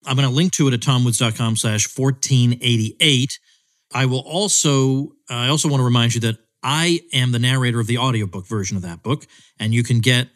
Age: 40-59